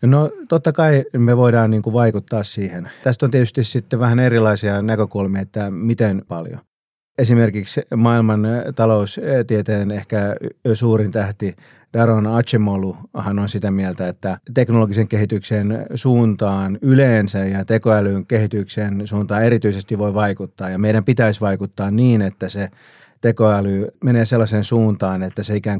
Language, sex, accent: Finnish, male, native